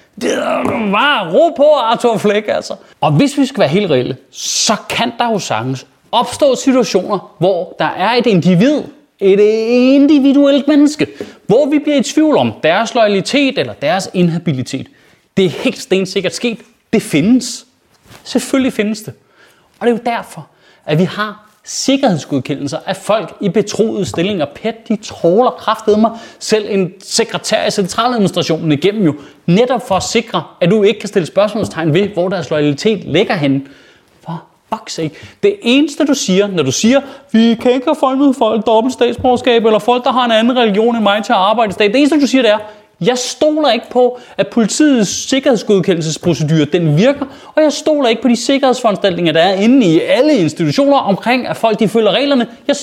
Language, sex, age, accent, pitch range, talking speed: Danish, male, 30-49, native, 190-265 Hz, 180 wpm